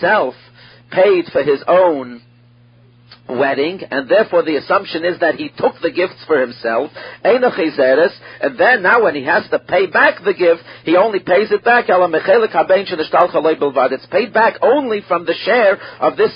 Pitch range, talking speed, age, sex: 145-215 Hz, 155 wpm, 50-69, male